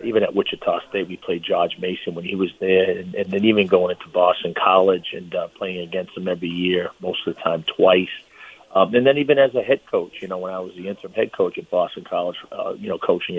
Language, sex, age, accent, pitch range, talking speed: English, male, 40-59, American, 95-130 Hz, 250 wpm